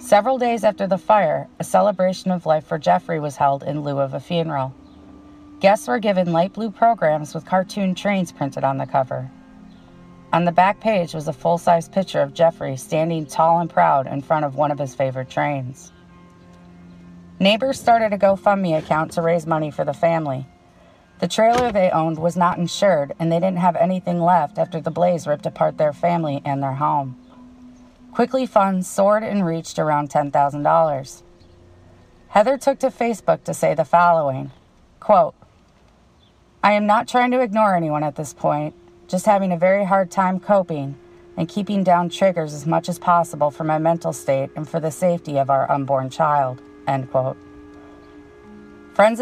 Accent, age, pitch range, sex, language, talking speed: American, 30-49, 140-195 Hz, female, English, 175 wpm